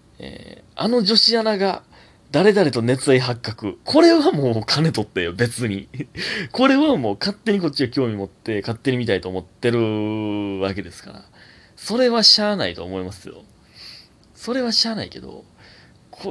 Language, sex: Japanese, male